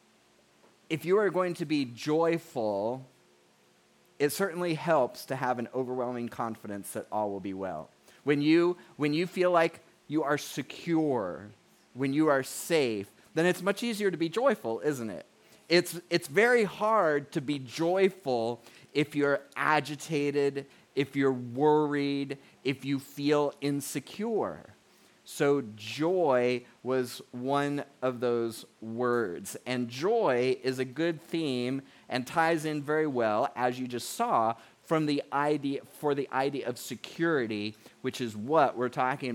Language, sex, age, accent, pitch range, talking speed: English, male, 30-49, American, 120-155 Hz, 145 wpm